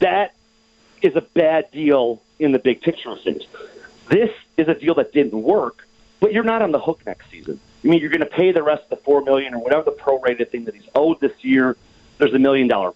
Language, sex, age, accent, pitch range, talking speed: English, male, 40-59, American, 130-175 Hz, 235 wpm